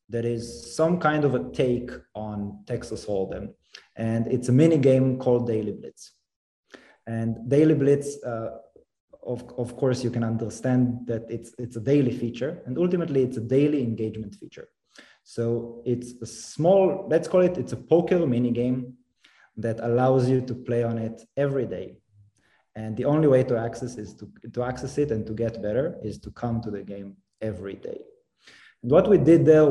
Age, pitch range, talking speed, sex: 20-39, 110-130 Hz, 180 wpm, male